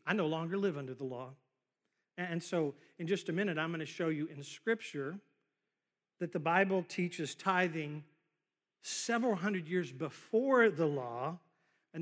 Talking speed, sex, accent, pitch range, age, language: 160 wpm, male, American, 155-220 Hz, 50-69, English